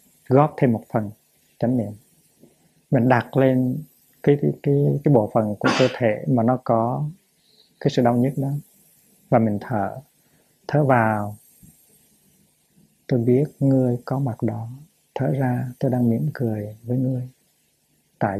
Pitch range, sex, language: 115-140 Hz, male, Vietnamese